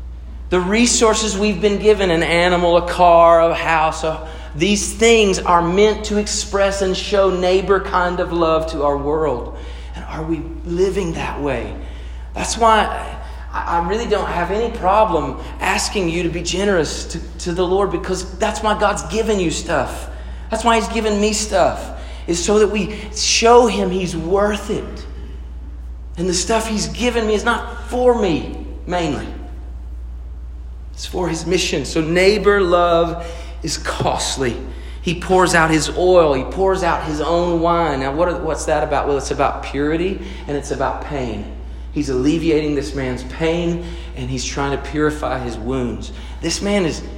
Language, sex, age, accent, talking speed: English, male, 40-59, American, 170 wpm